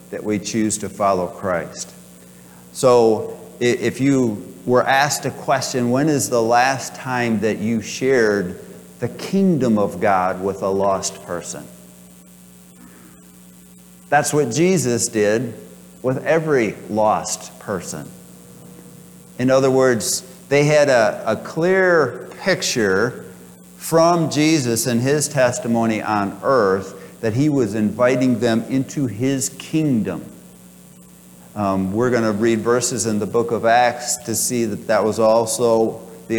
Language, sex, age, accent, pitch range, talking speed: English, male, 50-69, American, 95-130 Hz, 130 wpm